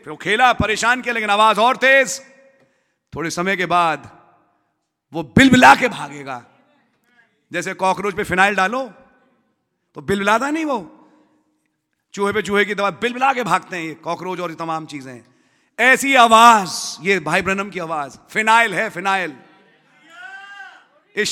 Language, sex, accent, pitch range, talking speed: English, male, Indian, 160-235 Hz, 140 wpm